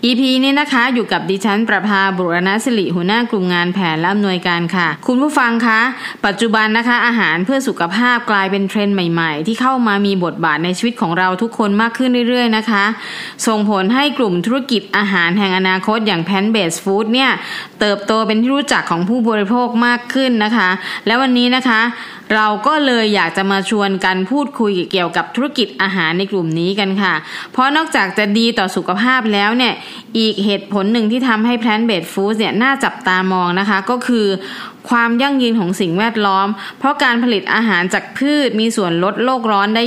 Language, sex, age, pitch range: Thai, female, 20-39, 190-240 Hz